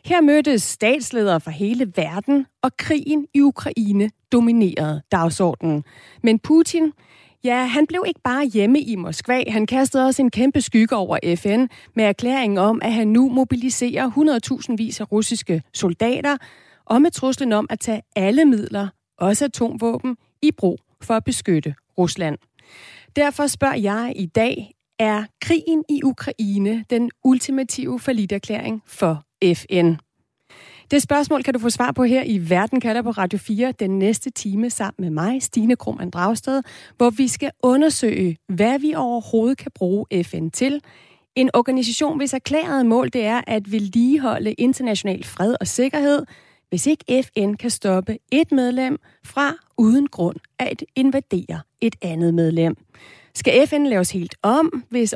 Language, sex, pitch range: Danish, female, 200-265 Hz